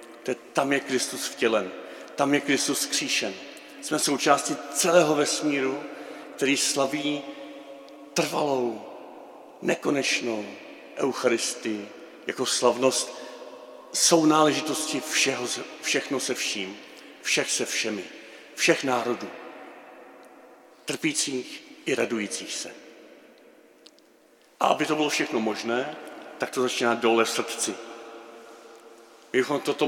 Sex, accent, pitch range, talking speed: male, native, 120-145 Hz, 100 wpm